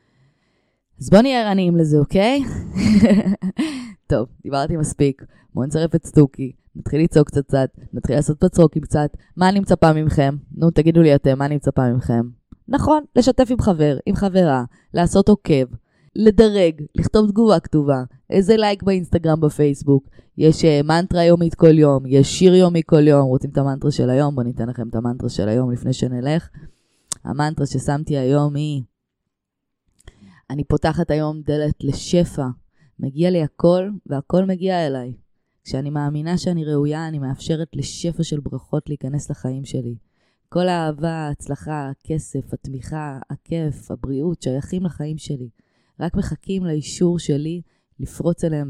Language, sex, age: Hebrew, female, 20-39